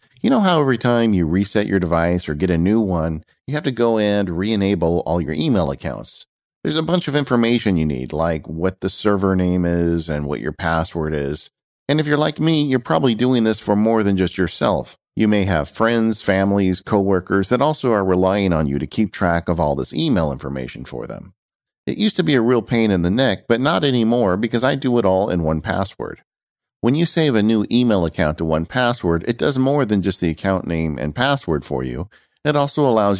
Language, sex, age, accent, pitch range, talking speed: English, male, 50-69, American, 85-120 Hz, 220 wpm